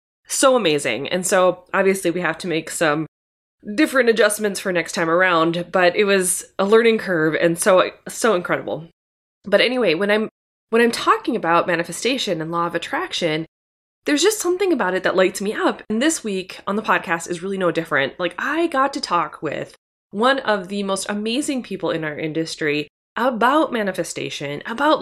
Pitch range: 165-235 Hz